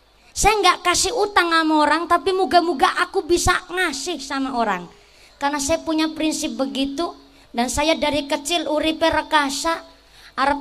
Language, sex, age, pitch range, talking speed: Indonesian, male, 20-39, 270-320 Hz, 140 wpm